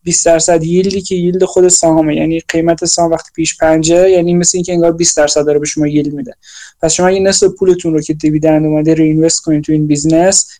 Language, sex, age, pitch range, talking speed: Persian, male, 20-39, 165-190 Hz, 220 wpm